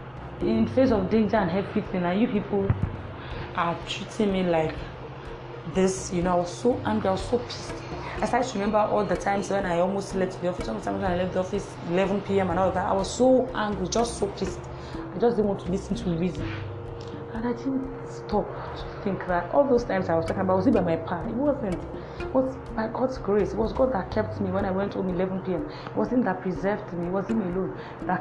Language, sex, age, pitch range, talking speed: English, female, 30-49, 170-205 Hz, 235 wpm